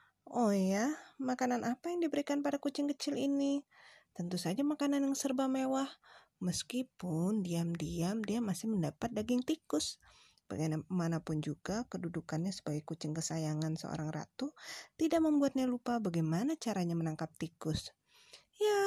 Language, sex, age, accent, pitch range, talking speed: Indonesian, female, 20-39, native, 175-275 Hz, 125 wpm